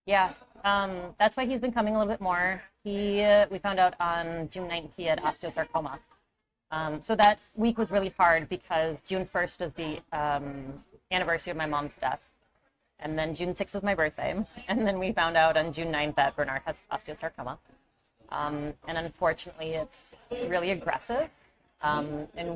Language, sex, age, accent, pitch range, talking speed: English, female, 30-49, American, 160-200 Hz, 180 wpm